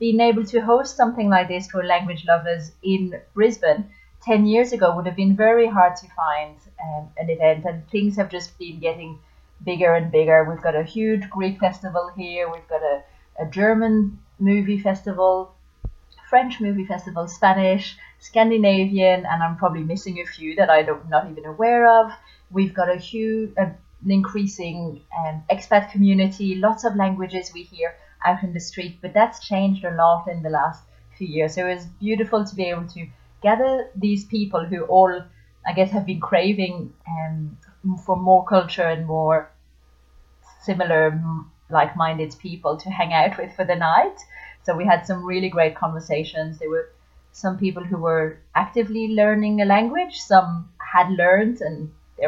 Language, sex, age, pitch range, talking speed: English, female, 30-49, 165-205 Hz, 170 wpm